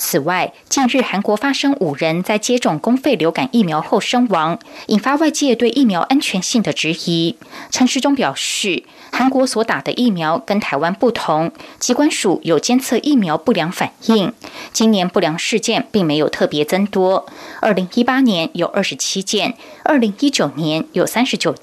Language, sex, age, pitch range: German, female, 20-39, 185-255 Hz